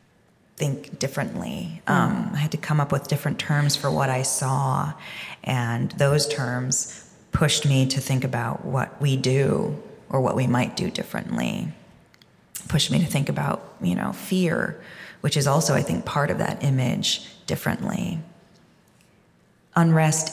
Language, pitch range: English, 145-175 Hz